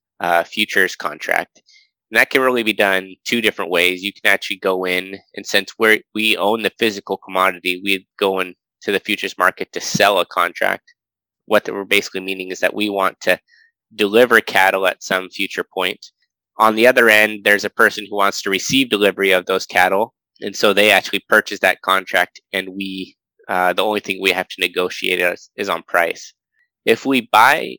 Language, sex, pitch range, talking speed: English, male, 95-120 Hz, 190 wpm